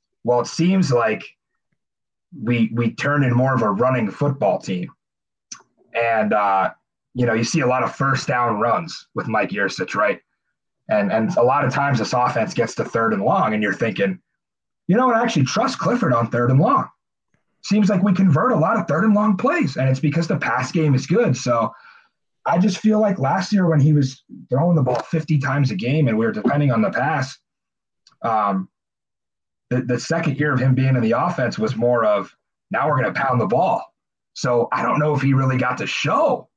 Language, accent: English, American